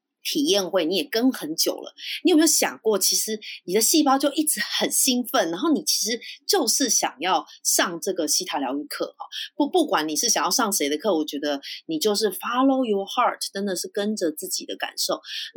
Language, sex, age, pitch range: Chinese, female, 20-39, 160-260 Hz